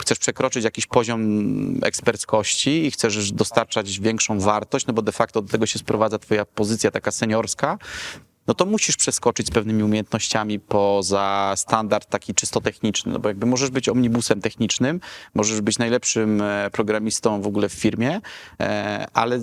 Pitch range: 110-130 Hz